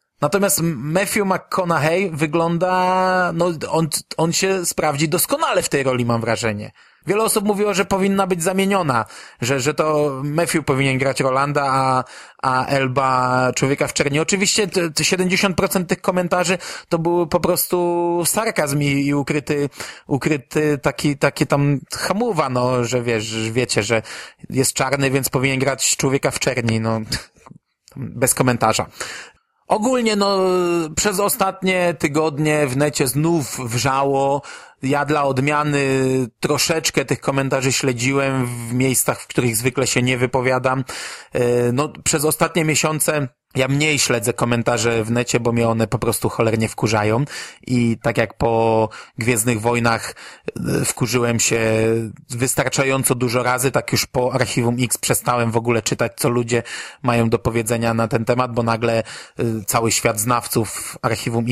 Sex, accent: male, native